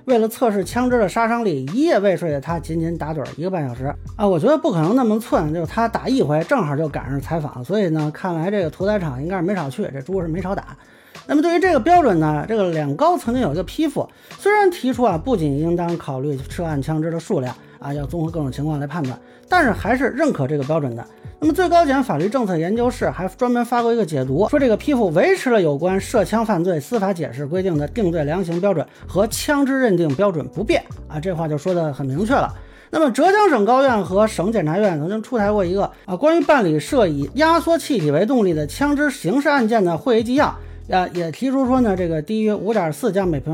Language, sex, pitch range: Chinese, male, 155-230 Hz